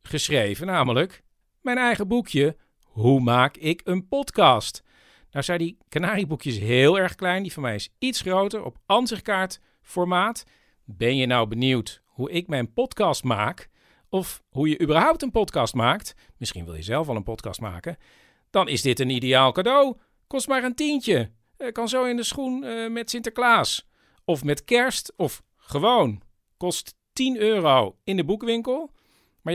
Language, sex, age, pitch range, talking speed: Dutch, male, 50-69, 130-215 Hz, 160 wpm